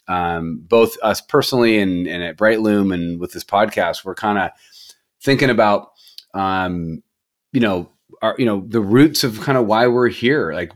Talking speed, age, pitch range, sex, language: 180 wpm, 30-49, 95-115 Hz, male, English